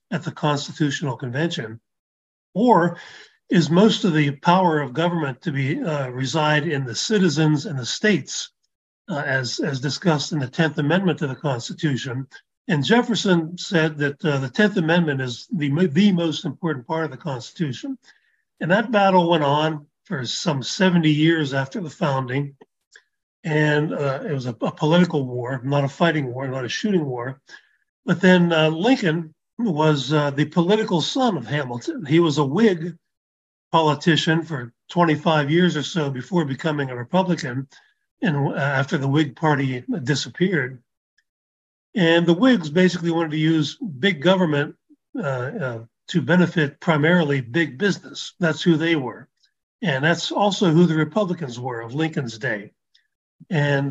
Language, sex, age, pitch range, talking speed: English, male, 40-59, 140-180 Hz, 155 wpm